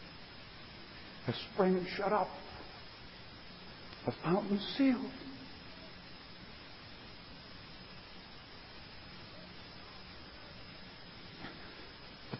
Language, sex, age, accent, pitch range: English, male, 60-79, American, 165-230 Hz